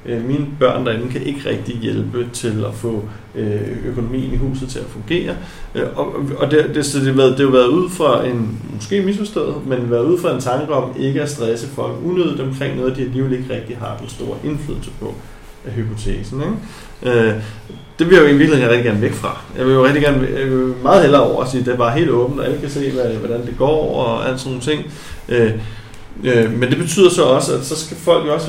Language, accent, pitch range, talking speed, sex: Danish, native, 120-145 Hz, 230 wpm, male